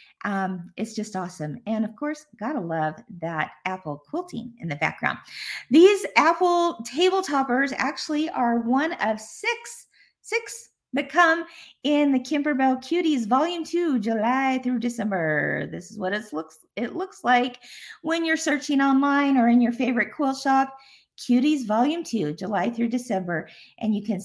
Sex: female